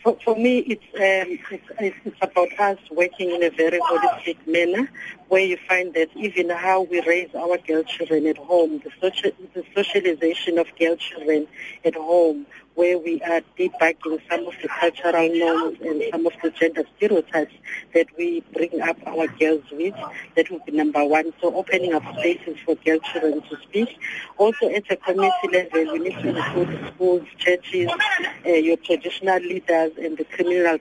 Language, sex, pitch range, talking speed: English, female, 165-190 Hz, 175 wpm